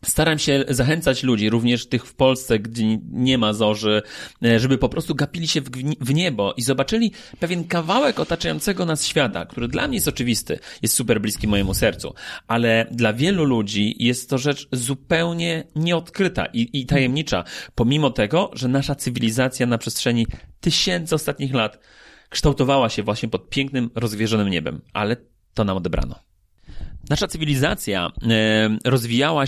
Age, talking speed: 30-49, 145 wpm